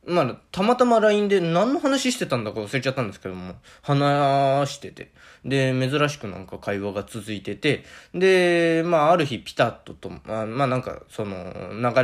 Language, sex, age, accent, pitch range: Japanese, male, 20-39, native, 110-175 Hz